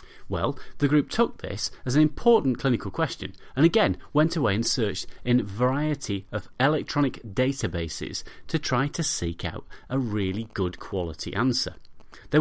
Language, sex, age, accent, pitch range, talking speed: English, male, 30-49, British, 100-145 Hz, 160 wpm